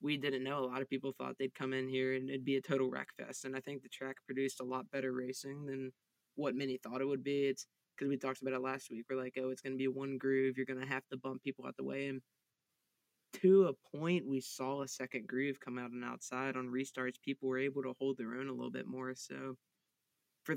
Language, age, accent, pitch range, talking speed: English, 20-39, American, 130-135 Hz, 265 wpm